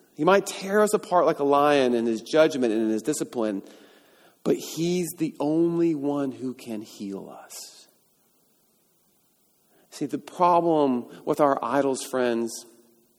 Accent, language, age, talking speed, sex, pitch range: American, English, 40-59, 140 wpm, male, 120-155 Hz